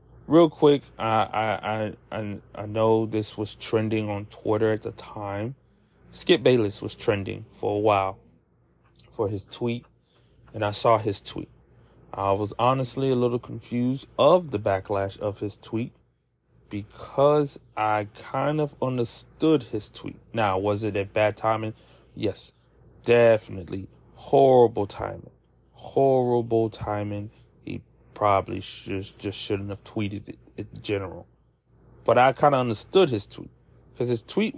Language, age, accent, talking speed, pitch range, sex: English, 30-49, American, 135 wpm, 105-130 Hz, male